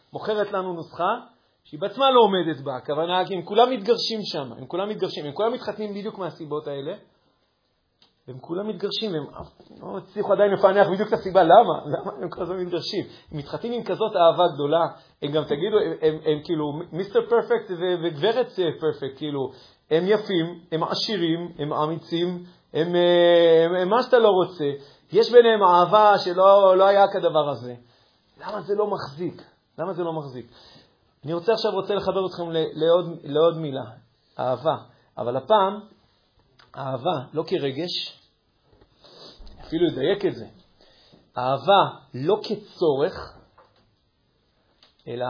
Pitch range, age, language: 150-200 Hz, 40-59, Hebrew